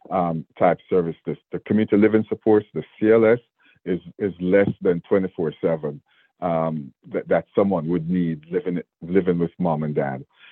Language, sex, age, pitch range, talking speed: English, male, 50-69, 85-105 Hz, 155 wpm